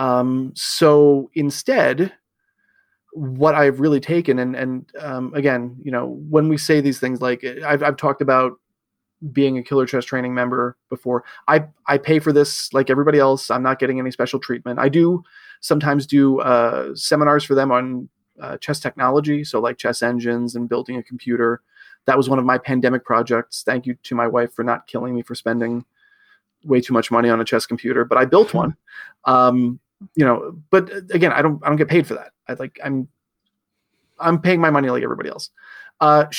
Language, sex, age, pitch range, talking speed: English, male, 30-49, 125-155 Hz, 195 wpm